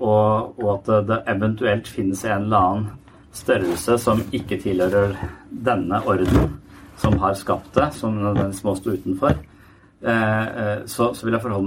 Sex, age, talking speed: male, 40-59, 135 wpm